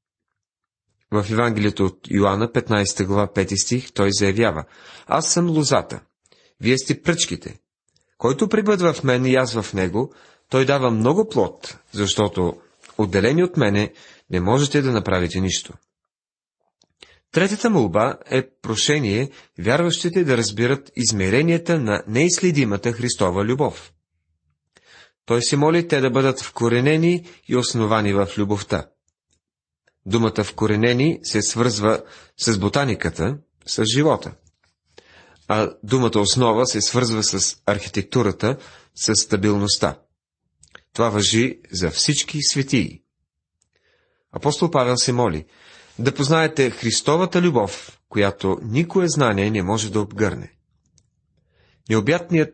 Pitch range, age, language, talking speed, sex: 100-135 Hz, 30-49, Bulgarian, 115 wpm, male